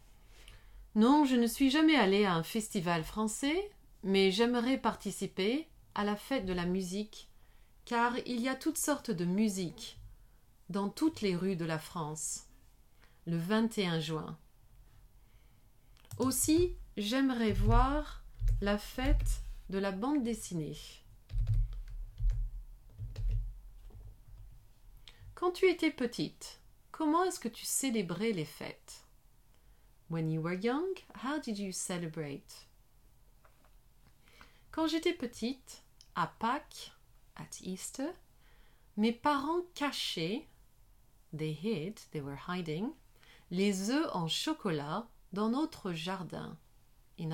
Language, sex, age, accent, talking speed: English, female, 30-49, French, 110 wpm